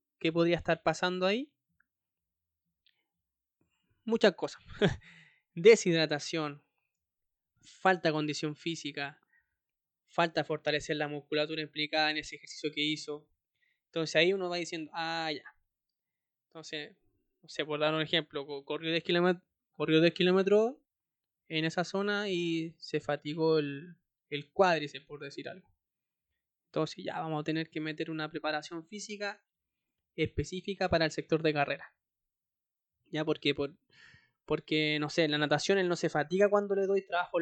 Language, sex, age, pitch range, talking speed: Spanish, male, 20-39, 150-185 Hz, 135 wpm